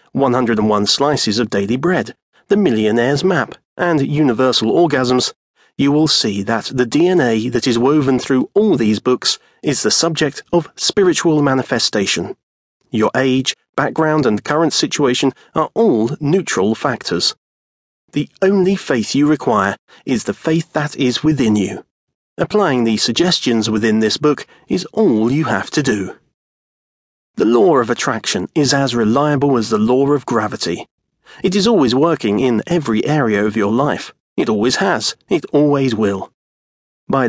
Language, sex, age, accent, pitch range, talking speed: English, male, 30-49, British, 115-155 Hz, 150 wpm